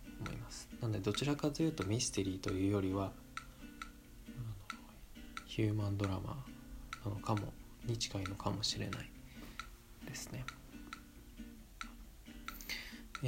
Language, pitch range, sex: Japanese, 100-125 Hz, male